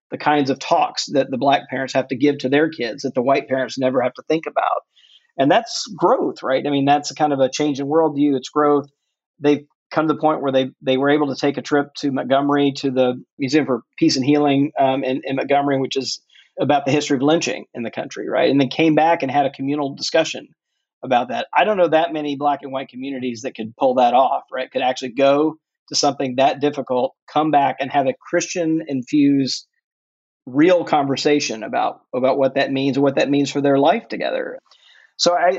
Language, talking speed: English, 225 wpm